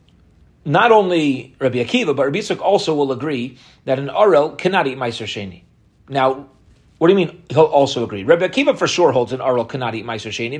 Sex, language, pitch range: male, English, 130-175 Hz